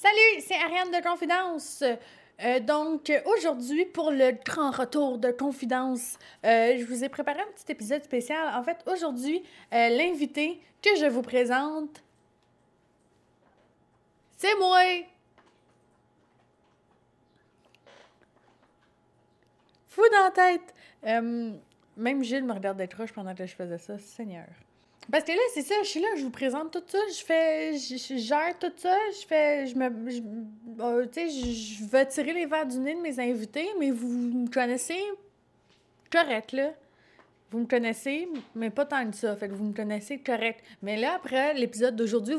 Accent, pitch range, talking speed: Canadian, 230-325 Hz, 160 wpm